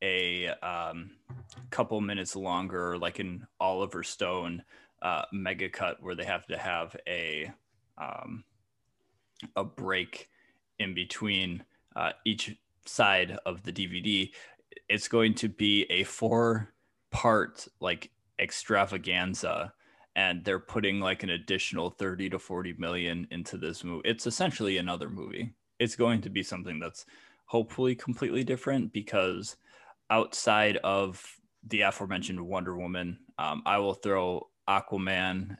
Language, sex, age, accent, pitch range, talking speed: English, male, 20-39, American, 95-115 Hz, 130 wpm